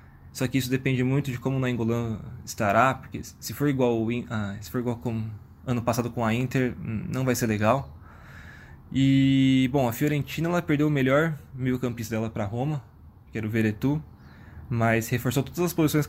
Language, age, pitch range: Portuguese, 20-39, 115-135 Hz